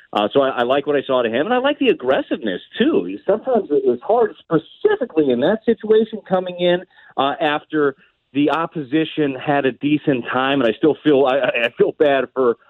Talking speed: 205 wpm